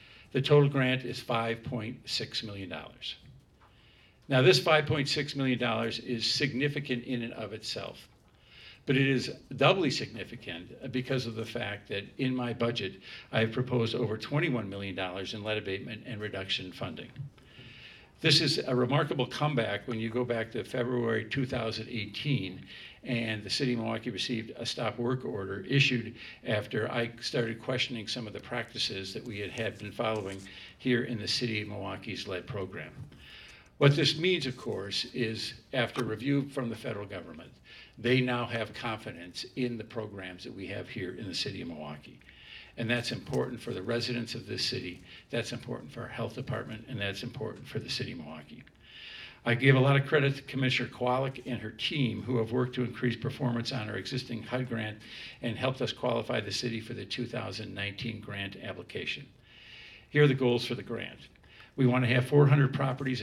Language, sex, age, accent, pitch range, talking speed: English, male, 50-69, American, 110-130 Hz, 175 wpm